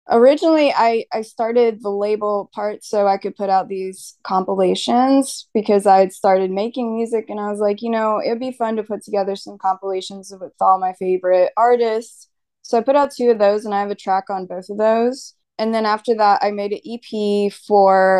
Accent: American